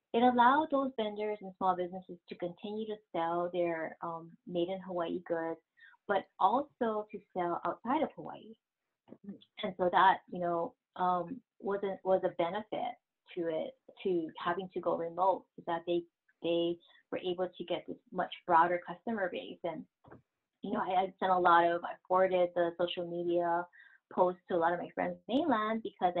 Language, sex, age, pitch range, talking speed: English, female, 20-39, 175-200 Hz, 180 wpm